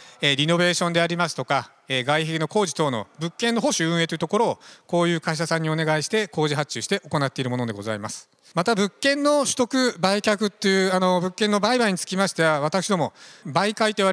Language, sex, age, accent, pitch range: Japanese, male, 40-59, native, 140-200 Hz